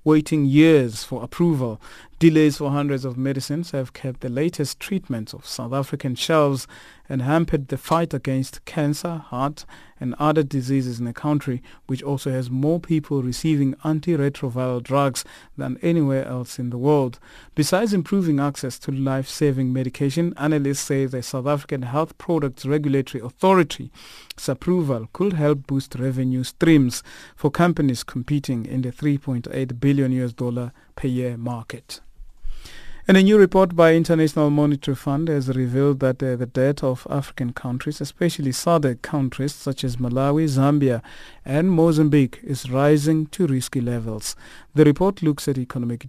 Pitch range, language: 130-155 Hz, English